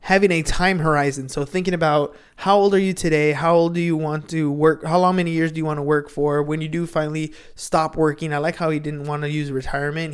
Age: 20-39